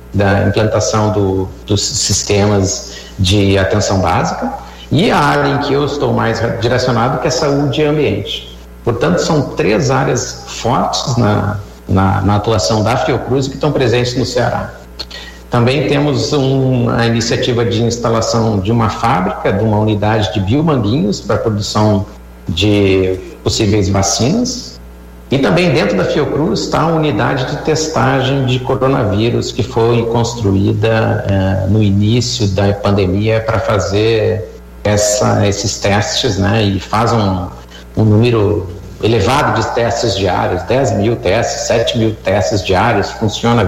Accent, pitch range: Brazilian, 100-120 Hz